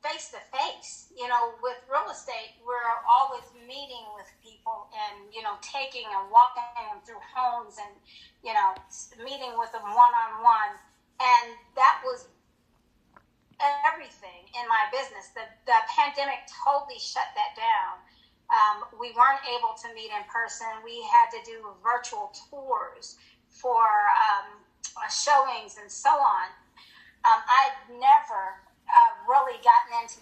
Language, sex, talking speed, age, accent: English, female, 140 wpm, 40-59, American